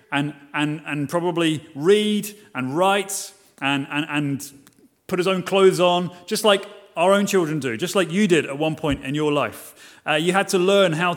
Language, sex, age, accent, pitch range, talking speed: English, male, 30-49, British, 160-200 Hz, 200 wpm